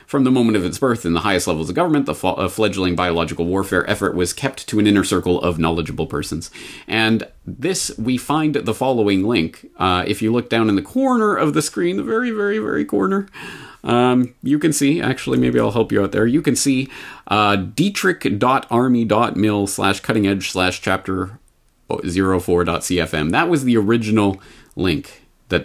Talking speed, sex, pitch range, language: 180 wpm, male, 90-120 Hz, English